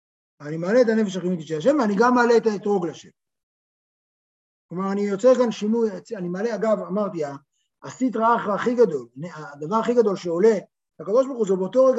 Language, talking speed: Hebrew, 170 wpm